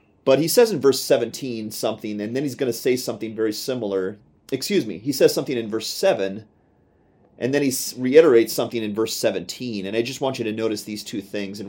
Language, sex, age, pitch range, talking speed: English, male, 30-49, 105-130 Hz, 220 wpm